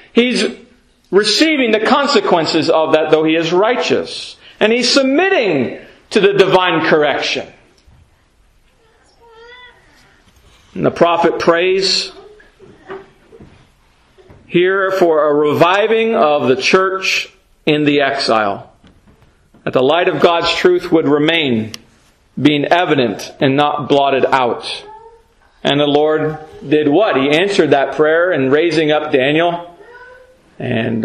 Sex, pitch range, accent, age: male, 145-190 Hz, American, 40-59